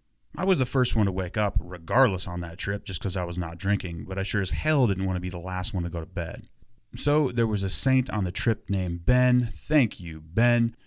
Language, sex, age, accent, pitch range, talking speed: English, male, 30-49, American, 95-125 Hz, 260 wpm